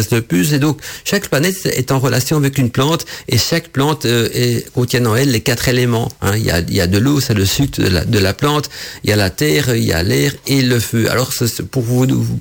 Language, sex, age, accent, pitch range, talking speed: French, male, 50-69, French, 115-140 Hz, 265 wpm